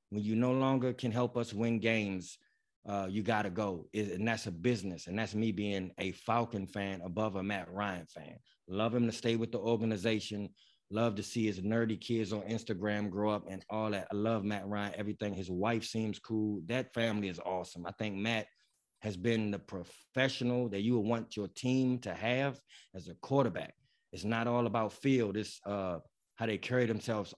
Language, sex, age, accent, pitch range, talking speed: English, male, 20-39, American, 100-120 Hz, 200 wpm